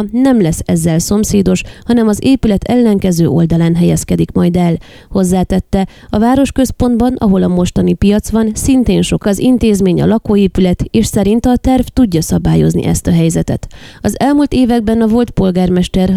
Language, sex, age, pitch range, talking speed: Hungarian, female, 20-39, 175-220 Hz, 150 wpm